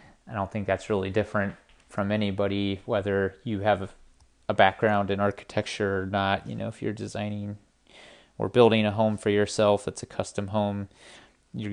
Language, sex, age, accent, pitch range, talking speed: English, male, 30-49, American, 100-115 Hz, 170 wpm